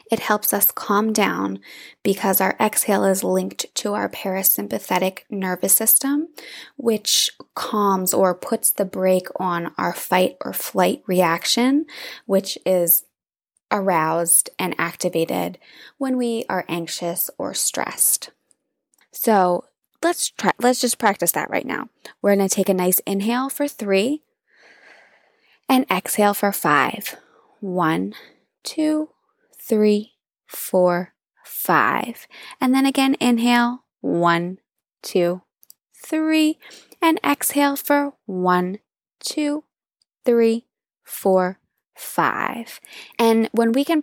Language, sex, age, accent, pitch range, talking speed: English, female, 20-39, American, 185-255 Hz, 115 wpm